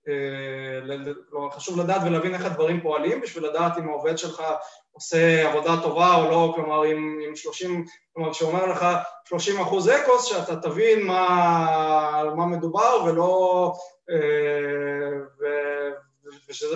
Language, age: Hebrew, 20-39